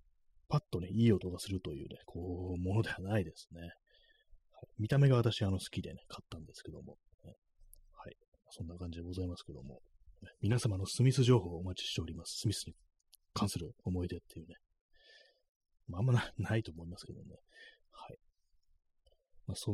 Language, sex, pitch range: Japanese, male, 90-115 Hz